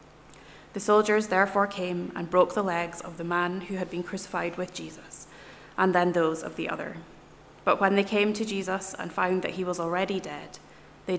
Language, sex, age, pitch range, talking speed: English, female, 20-39, 170-190 Hz, 200 wpm